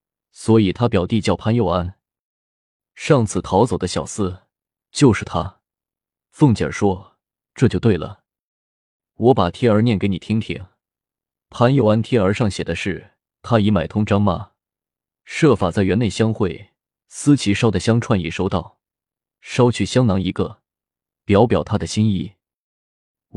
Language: Chinese